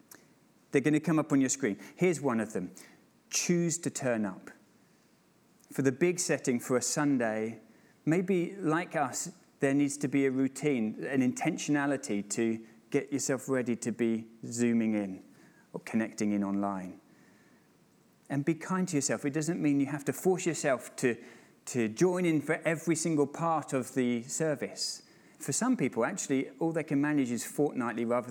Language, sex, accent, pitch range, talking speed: English, male, British, 125-165 Hz, 170 wpm